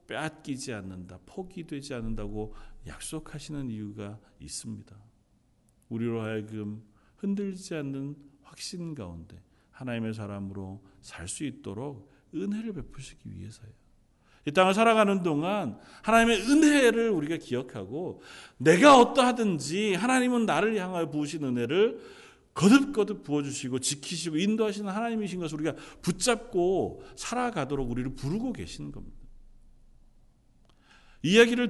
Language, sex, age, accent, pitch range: Korean, male, 40-59, native, 125-195 Hz